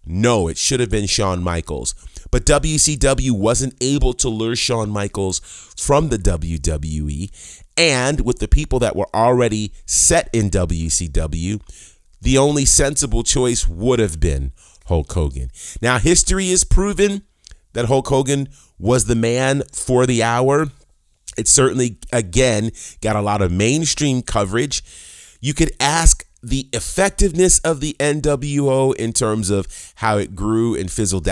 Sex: male